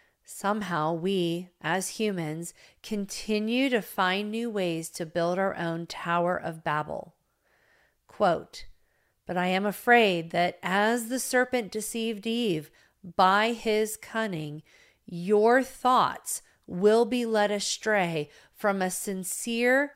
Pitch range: 165-220 Hz